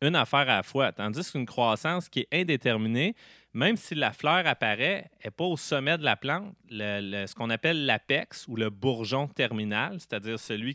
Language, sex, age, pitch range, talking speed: French, male, 30-49, 105-130 Hz, 195 wpm